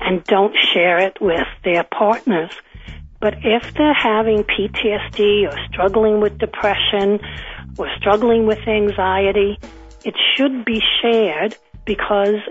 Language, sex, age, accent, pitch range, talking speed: English, female, 60-79, American, 180-225 Hz, 120 wpm